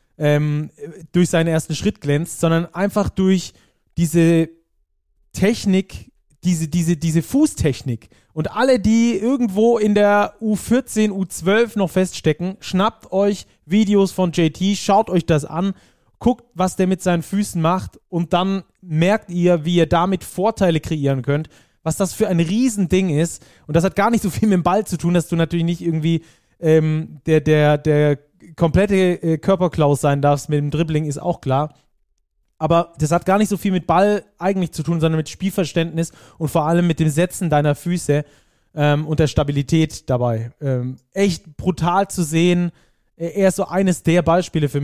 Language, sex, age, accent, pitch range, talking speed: German, male, 20-39, German, 150-190 Hz, 170 wpm